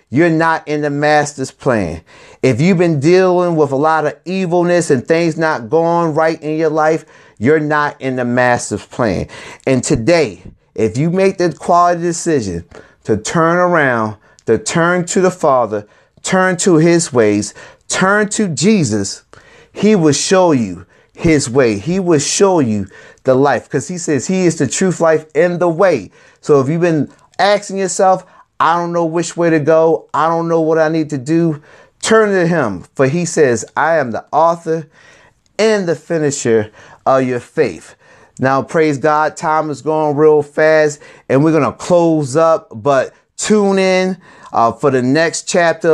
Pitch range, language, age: 145-170 Hz, English, 30-49